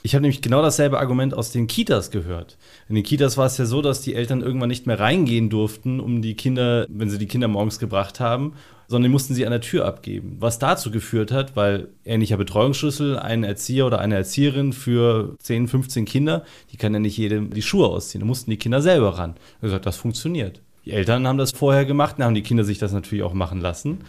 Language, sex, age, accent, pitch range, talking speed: German, male, 30-49, German, 110-140 Hz, 235 wpm